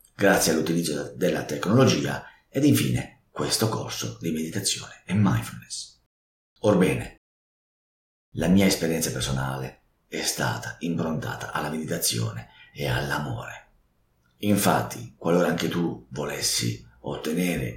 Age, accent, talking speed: 50-69, native, 100 wpm